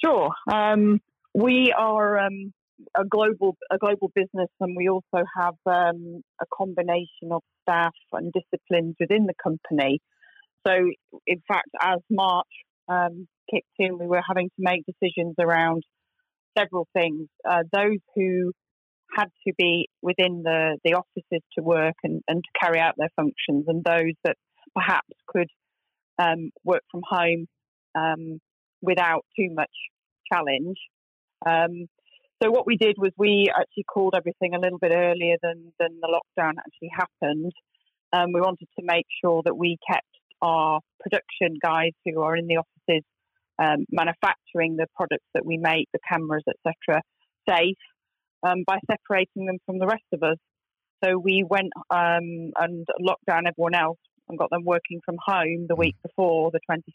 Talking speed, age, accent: 160 wpm, 30-49, British